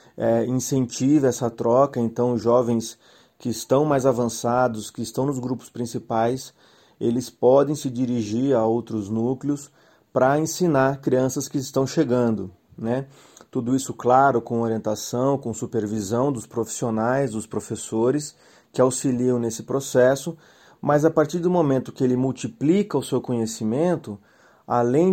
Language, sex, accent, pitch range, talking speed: Portuguese, male, Brazilian, 115-140 Hz, 130 wpm